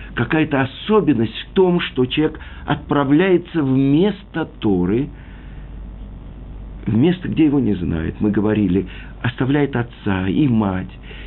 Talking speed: 115 wpm